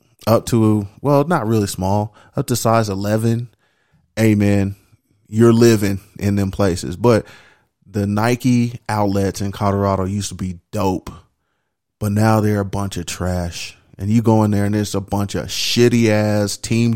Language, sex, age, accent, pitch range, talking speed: English, male, 30-49, American, 105-125 Hz, 160 wpm